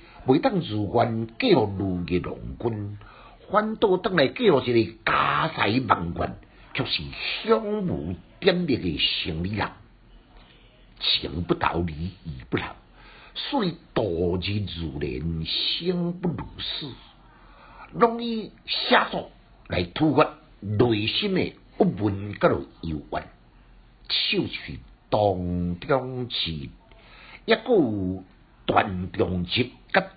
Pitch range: 90-145 Hz